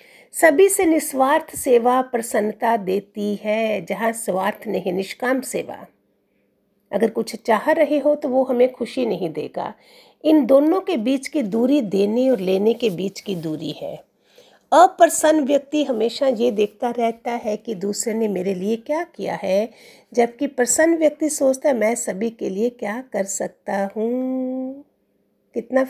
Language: Hindi